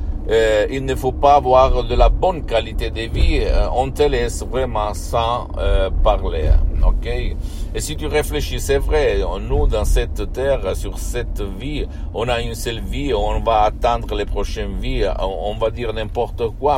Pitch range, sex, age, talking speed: 80-115 Hz, male, 60-79, 180 wpm